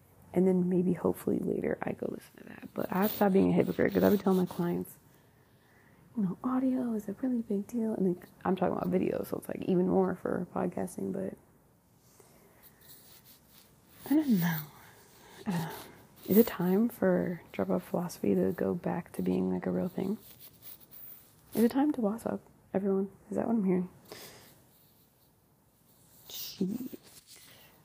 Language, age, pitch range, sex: English, 30-49, 180-205 Hz, female